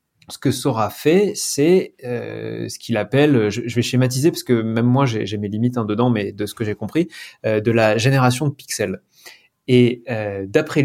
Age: 20-39